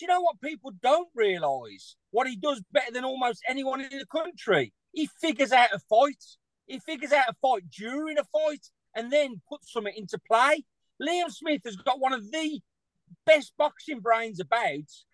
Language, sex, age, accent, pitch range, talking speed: English, male, 40-59, British, 225-290 Hz, 185 wpm